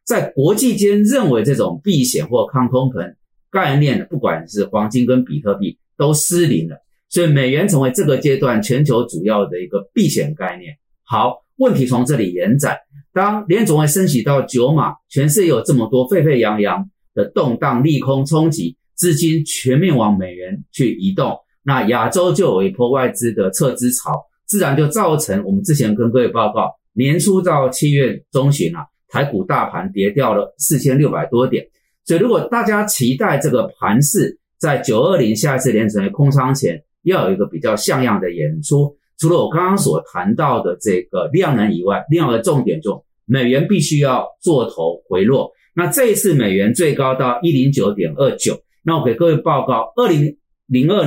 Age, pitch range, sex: 30-49, 125-175 Hz, male